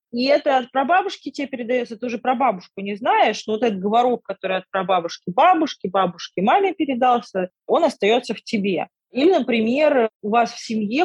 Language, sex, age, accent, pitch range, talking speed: Russian, female, 30-49, native, 190-245 Hz, 170 wpm